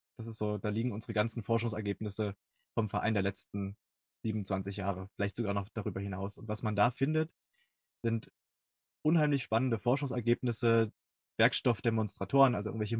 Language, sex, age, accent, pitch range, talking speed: English, male, 20-39, German, 105-120 Hz, 130 wpm